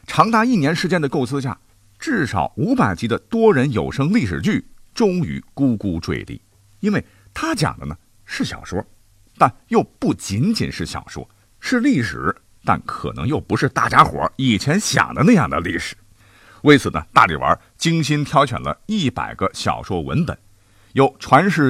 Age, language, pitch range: 50-69, Chinese, 100-160 Hz